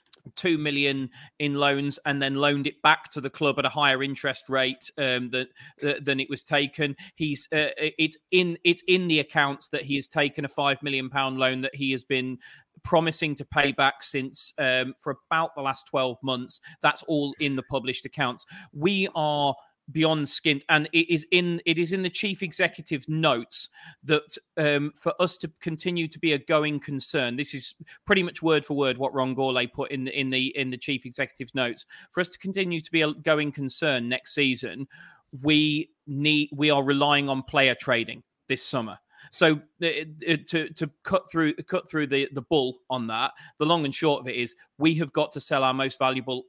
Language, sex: English, male